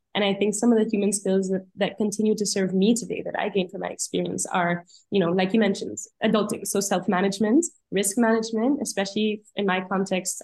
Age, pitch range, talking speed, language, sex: 10-29, 185-225 Hz, 205 wpm, English, female